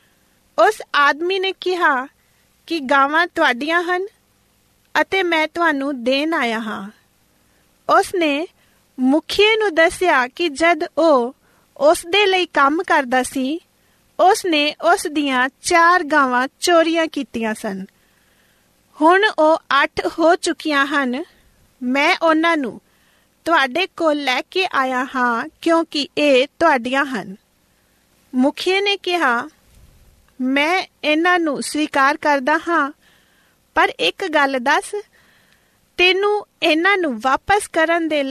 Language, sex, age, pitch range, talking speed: Punjabi, female, 40-59, 275-345 Hz, 95 wpm